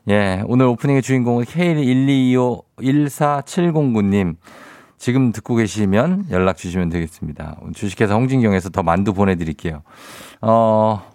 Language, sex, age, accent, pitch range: Korean, male, 50-69, native, 90-125 Hz